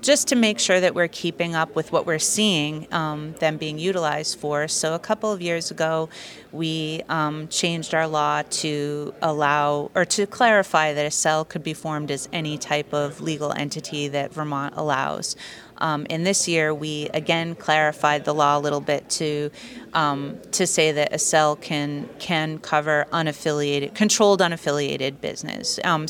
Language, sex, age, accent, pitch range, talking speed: English, female, 30-49, American, 150-170 Hz, 170 wpm